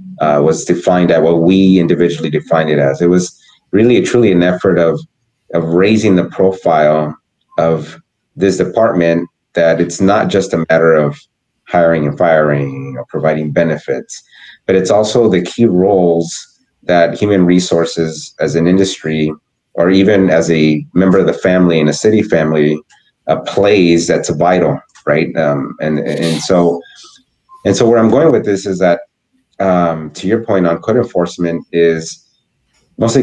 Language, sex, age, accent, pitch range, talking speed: English, male, 30-49, American, 80-95 Hz, 160 wpm